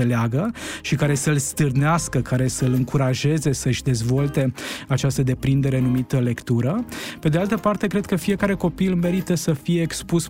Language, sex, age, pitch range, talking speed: Romanian, male, 20-39, 130-155 Hz, 145 wpm